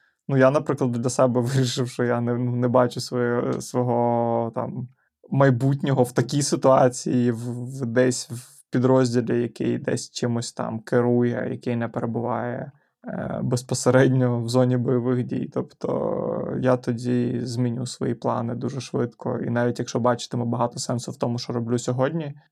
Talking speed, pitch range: 135 wpm, 125-150 Hz